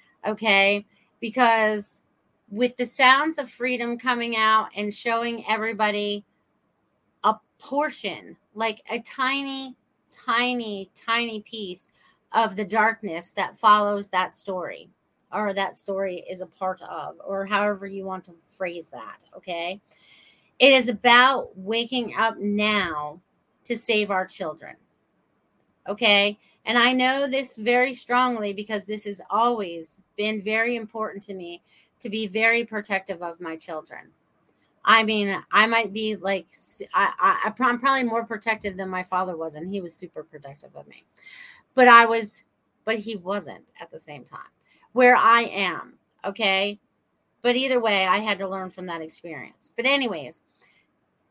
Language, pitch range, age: English, 195-235 Hz, 30-49